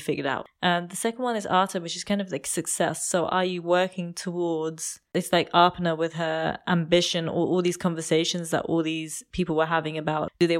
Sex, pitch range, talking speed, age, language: female, 165-200 Hz, 215 wpm, 20-39, English